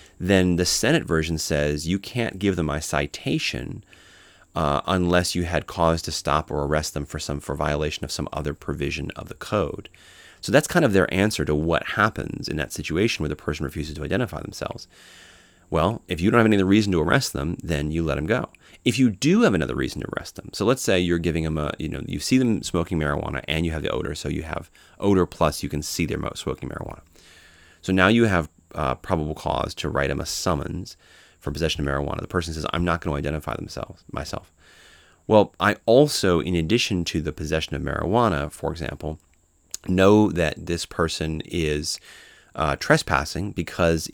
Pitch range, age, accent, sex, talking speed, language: 75-90 Hz, 30-49, American, male, 205 wpm, English